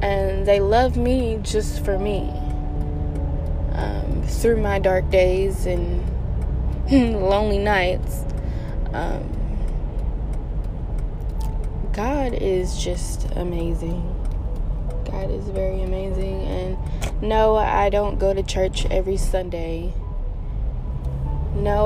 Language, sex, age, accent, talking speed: English, female, 20-39, American, 95 wpm